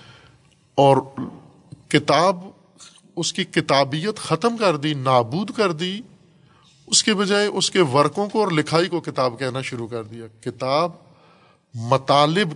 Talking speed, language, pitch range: 135 wpm, Urdu, 125-165 Hz